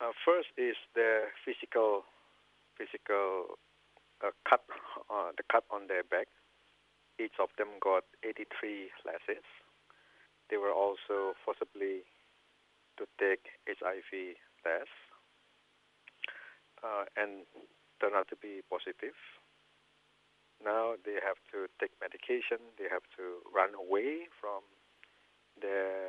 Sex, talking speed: male, 110 wpm